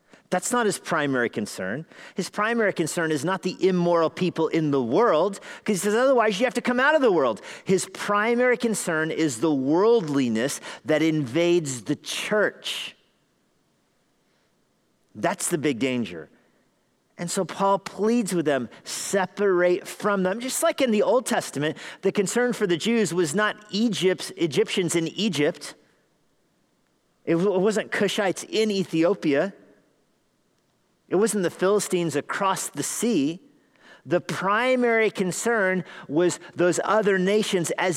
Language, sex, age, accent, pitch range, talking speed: English, male, 40-59, American, 160-210 Hz, 140 wpm